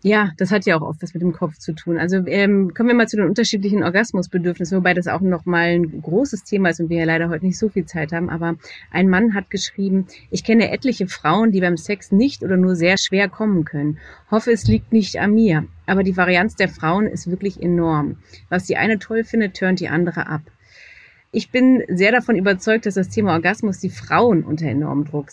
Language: German